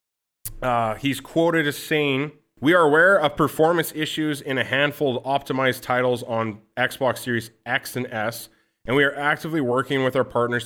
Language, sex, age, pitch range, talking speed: English, male, 30-49, 115-150 Hz, 175 wpm